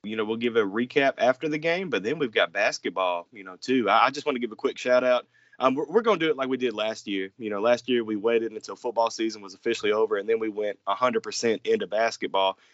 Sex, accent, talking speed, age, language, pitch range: male, American, 270 wpm, 30-49, English, 110-140 Hz